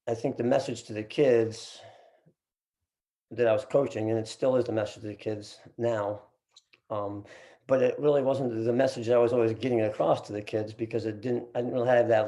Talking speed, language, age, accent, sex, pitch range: 220 wpm, English, 50-69, American, male, 105-120 Hz